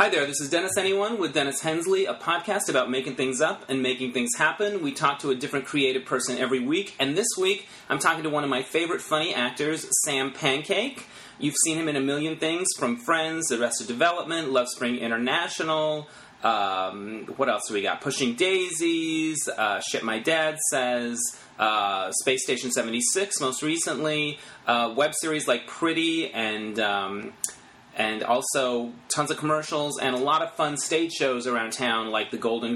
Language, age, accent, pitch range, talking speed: English, 30-49, American, 120-155 Hz, 185 wpm